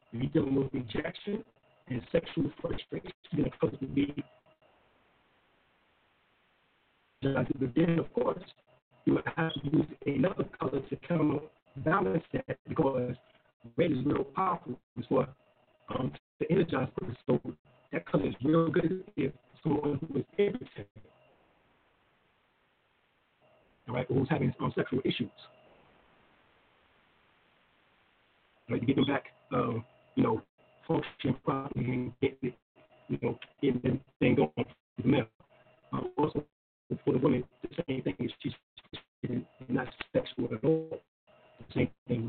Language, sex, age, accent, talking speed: English, male, 50-69, American, 140 wpm